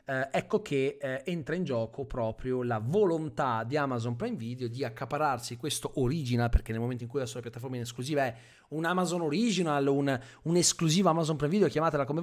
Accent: native